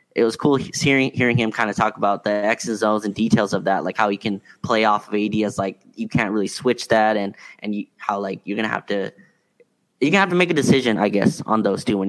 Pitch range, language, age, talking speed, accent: 105-125 Hz, English, 10-29, 265 wpm, American